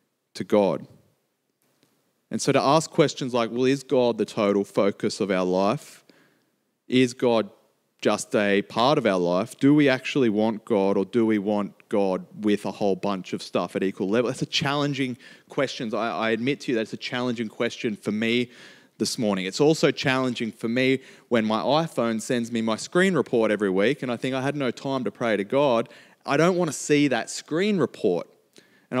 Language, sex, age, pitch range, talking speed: English, male, 30-49, 110-135 Hz, 195 wpm